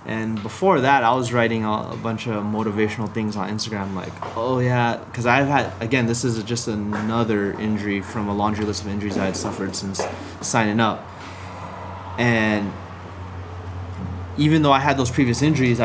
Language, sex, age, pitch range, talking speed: English, male, 20-39, 105-130 Hz, 170 wpm